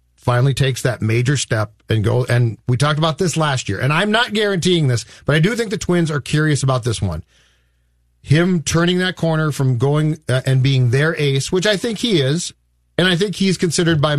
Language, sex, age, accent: English, male, 40-59, American